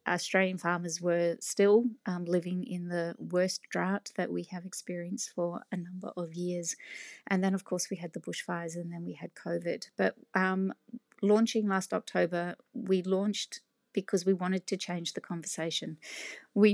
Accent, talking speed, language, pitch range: Australian, 170 wpm, English, 170-195 Hz